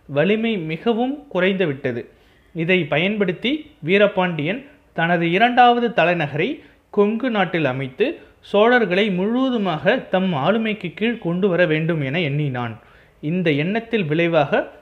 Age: 30-49